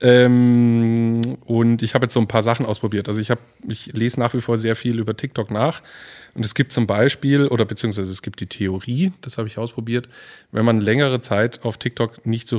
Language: German